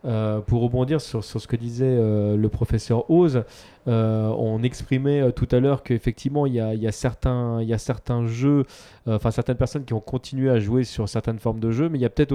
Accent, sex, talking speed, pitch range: French, male, 235 wpm, 110-130 Hz